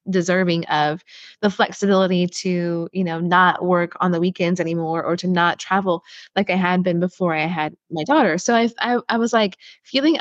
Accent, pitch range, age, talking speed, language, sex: American, 175-205 Hz, 20-39, 195 wpm, English, female